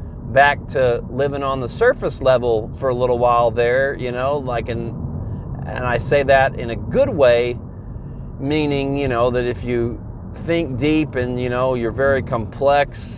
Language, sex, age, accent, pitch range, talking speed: English, male, 30-49, American, 115-135 Hz, 175 wpm